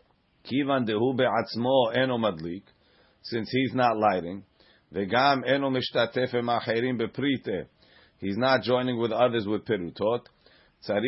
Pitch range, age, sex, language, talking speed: 115-130 Hz, 40-59, male, English, 60 wpm